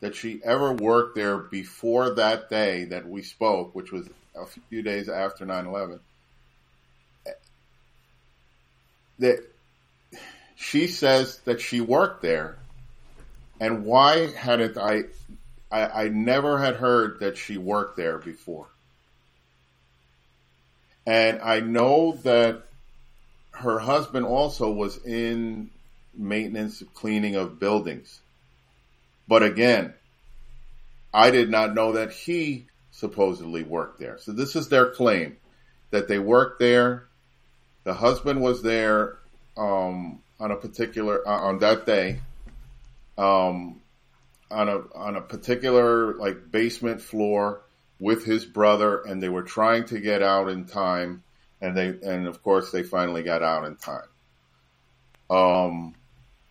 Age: 40-59